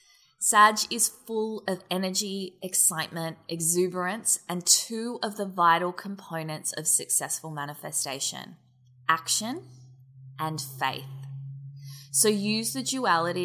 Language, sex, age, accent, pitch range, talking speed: English, female, 20-39, Australian, 155-210 Hz, 105 wpm